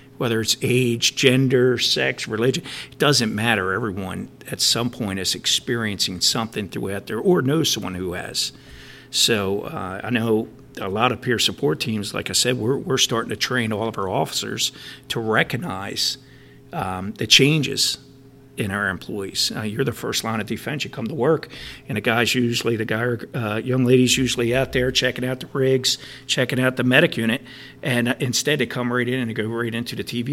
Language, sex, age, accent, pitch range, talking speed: English, male, 50-69, American, 100-130 Hz, 195 wpm